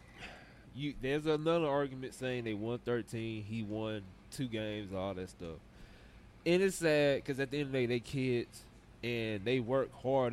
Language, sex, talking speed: English, male, 180 wpm